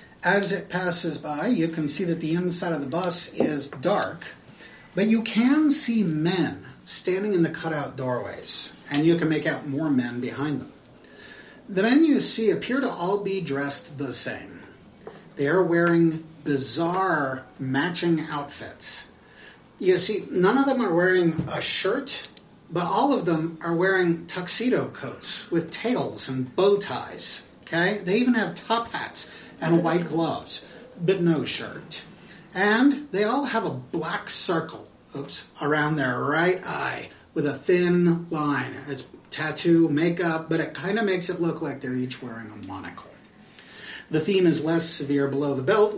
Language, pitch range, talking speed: English, 145-200 Hz, 160 wpm